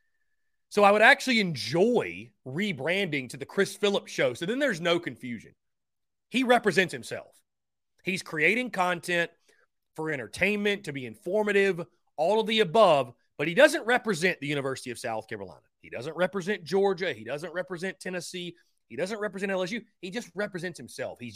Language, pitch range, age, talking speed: English, 150-210 Hz, 30-49, 160 wpm